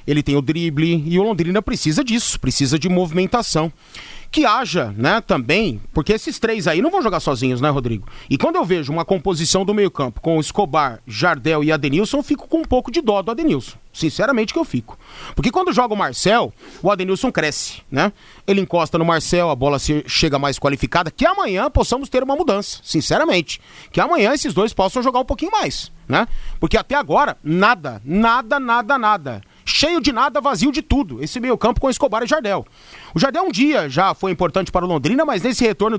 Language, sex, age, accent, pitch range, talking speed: Portuguese, male, 30-49, Brazilian, 165-270 Hz, 205 wpm